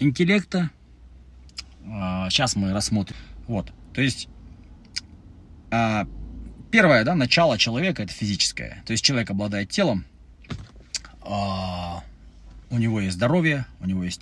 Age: 30-49